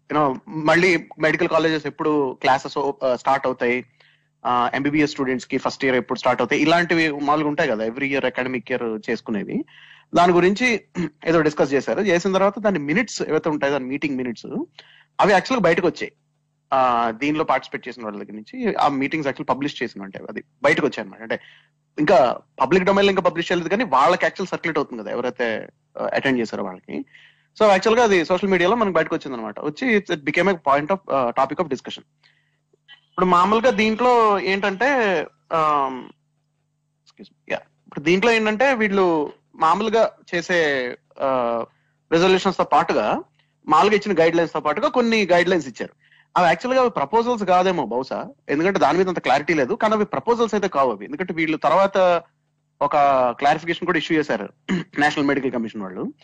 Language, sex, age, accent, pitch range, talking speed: Telugu, male, 30-49, native, 135-185 Hz, 150 wpm